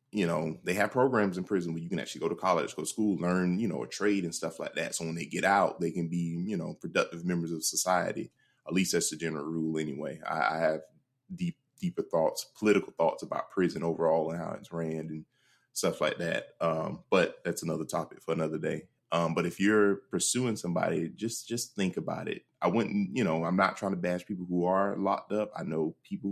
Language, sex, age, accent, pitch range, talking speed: English, male, 20-39, American, 85-100 Hz, 235 wpm